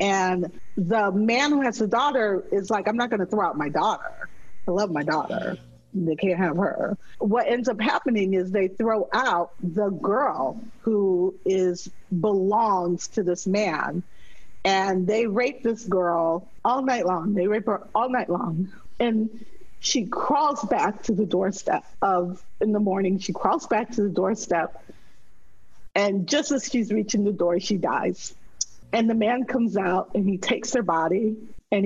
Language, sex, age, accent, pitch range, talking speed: English, female, 50-69, American, 190-235 Hz, 170 wpm